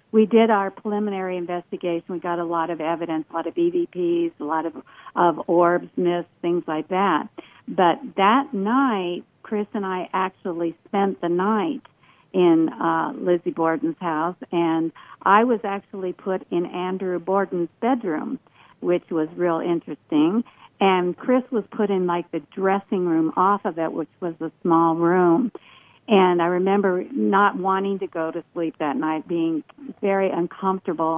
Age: 50-69